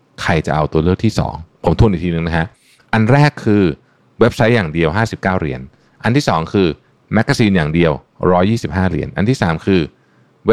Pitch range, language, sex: 75-110 Hz, Thai, male